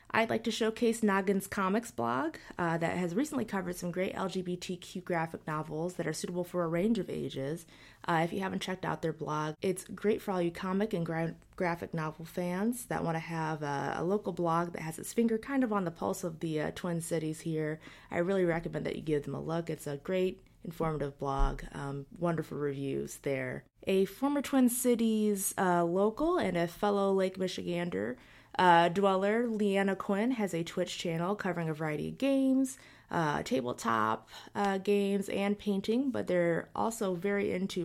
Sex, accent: female, American